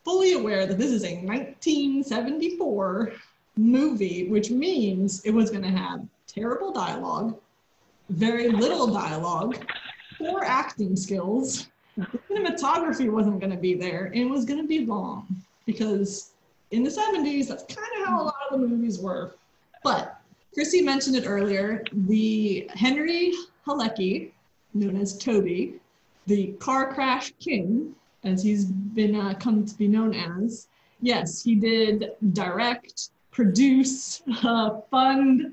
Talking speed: 135 wpm